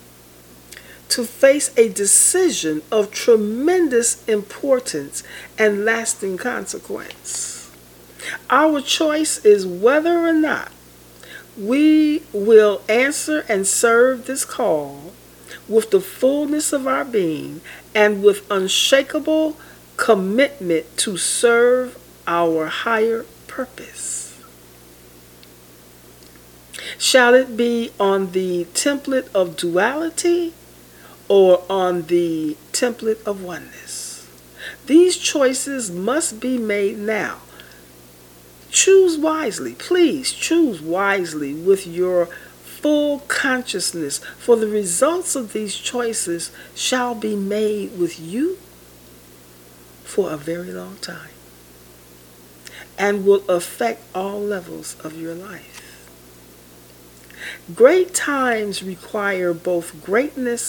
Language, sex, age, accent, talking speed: English, female, 40-59, American, 95 wpm